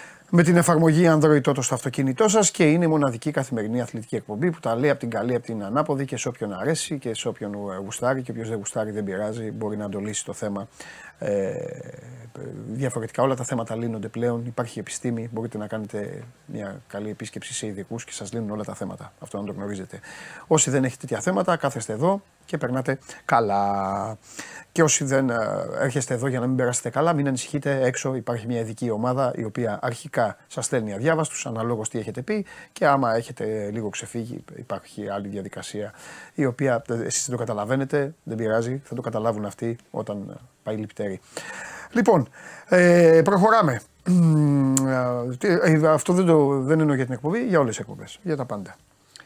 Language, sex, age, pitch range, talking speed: Greek, male, 30-49, 110-150 Hz, 175 wpm